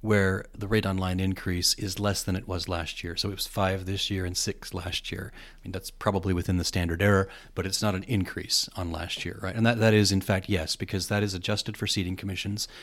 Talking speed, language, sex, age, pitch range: 250 wpm, English, male, 30-49, 95-115 Hz